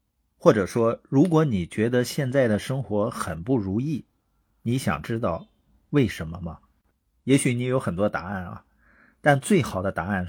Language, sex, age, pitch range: Chinese, male, 50-69, 95-135 Hz